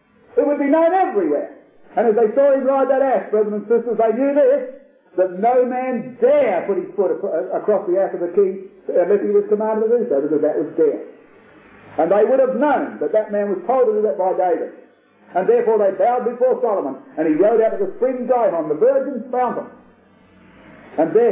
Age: 50-69